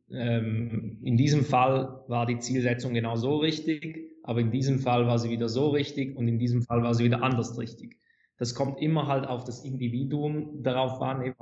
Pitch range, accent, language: 115-140 Hz, German, German